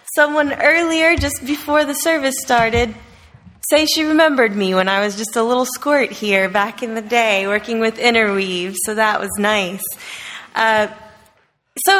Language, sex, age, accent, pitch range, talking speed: English, female, 20-39, American, 210-280 Hz, 160 wpm